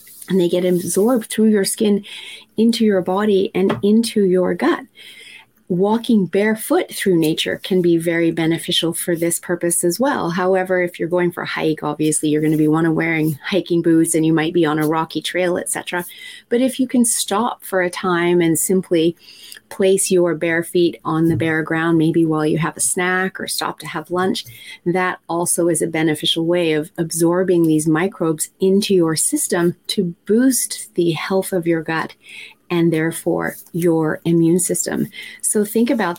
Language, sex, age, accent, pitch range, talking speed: English, female, 30-49, American, 165-195 Hz, 180 wpm